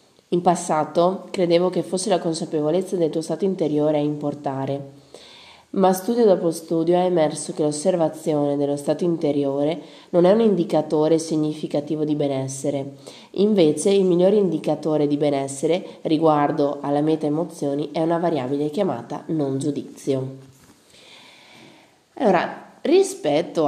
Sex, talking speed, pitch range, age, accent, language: female, 125 wpm, 145-180 Hz, 20-39, native, Italian